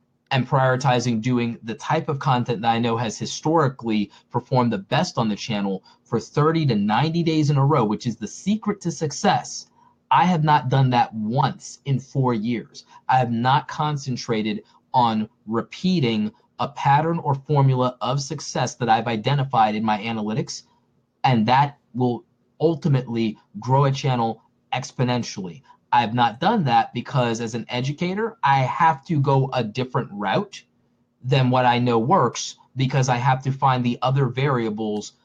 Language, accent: English, American